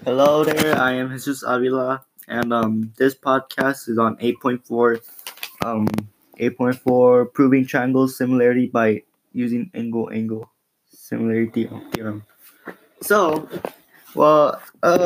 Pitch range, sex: 120-135 Hz, male